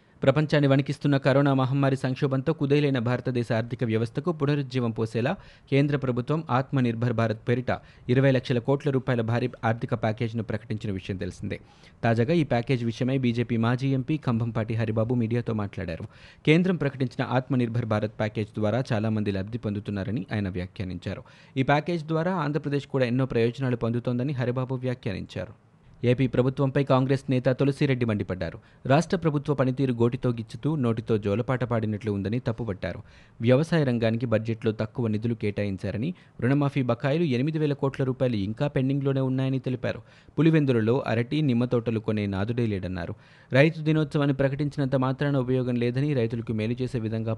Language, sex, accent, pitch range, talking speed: Telugu, male, native, 115-140 Hz, 130 wpm